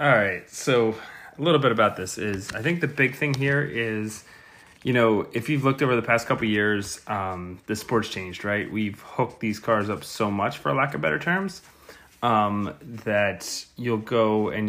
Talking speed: 200 wpm